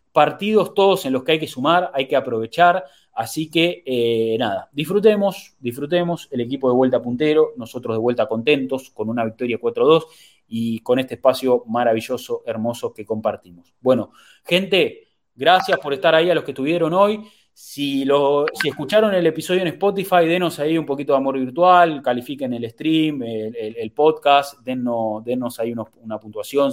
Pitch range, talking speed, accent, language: 125-180 Hz, 175 wpm, Argentinian, English